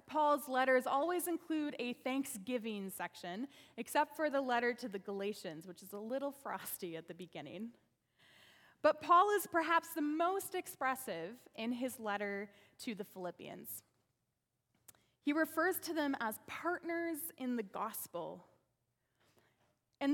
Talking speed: 135 wpm